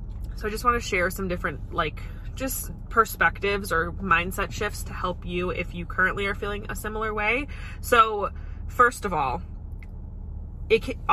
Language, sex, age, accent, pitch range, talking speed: English, female, 20-39, American, 160-205 Hz, 165 wpm